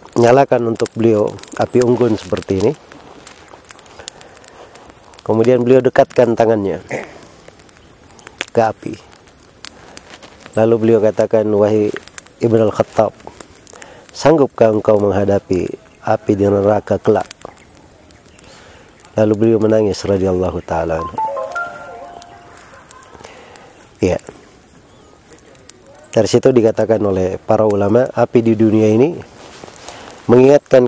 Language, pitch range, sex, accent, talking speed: Indonesian, 110-125 Hz, male, native, 85 wpm